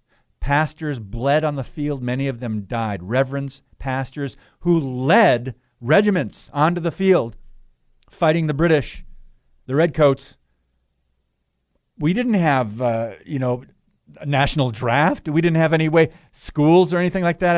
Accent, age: American, 50-69